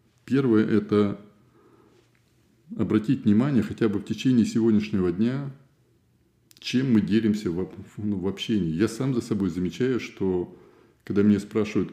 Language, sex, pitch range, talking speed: Russian, male, 95-115 Hz, 135 wpm